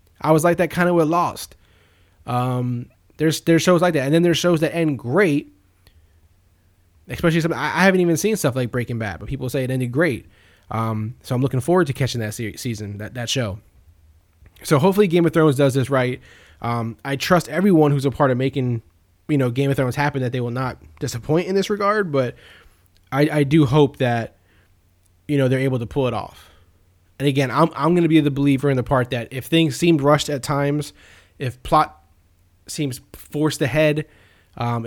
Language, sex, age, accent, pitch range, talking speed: English, male, 20-39, American, 110-155 Hz, 205 wpm